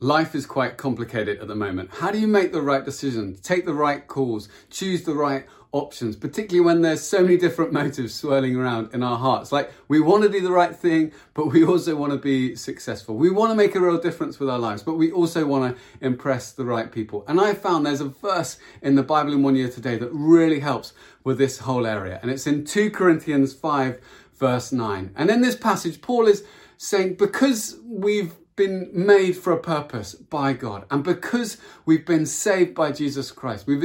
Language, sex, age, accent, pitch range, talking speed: English, male, 30-49, British, 130-175 Hz, 215 wpm